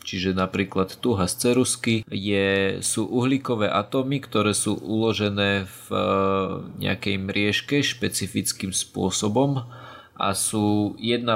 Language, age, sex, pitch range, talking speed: Slovak, 20-39, male, 100-120 Hz, 105 wpm